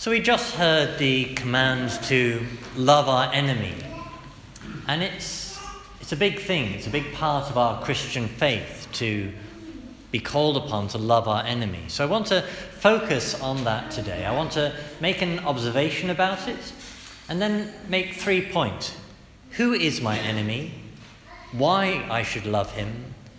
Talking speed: 160 wpm